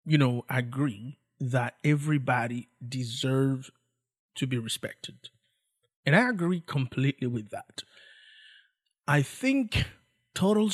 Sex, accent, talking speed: male, Nigerian, 105 wpm